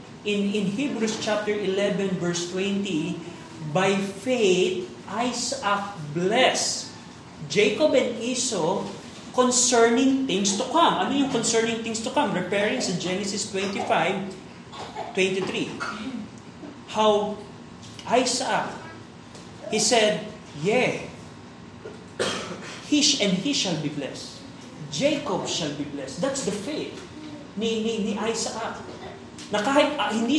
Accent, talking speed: native, 110 wpm